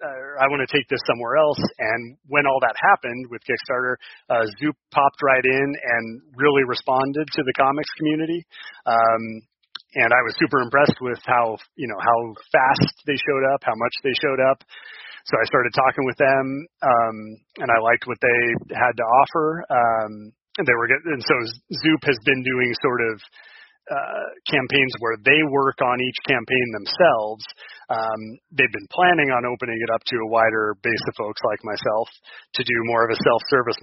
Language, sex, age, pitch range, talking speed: English, male, 30-49, 115-140 Hz, 190 wpm